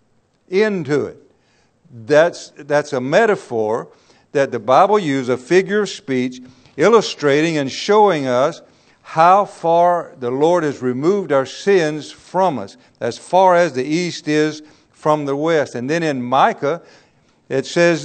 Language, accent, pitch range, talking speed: English, American, 140-180 Hz, 145 wpm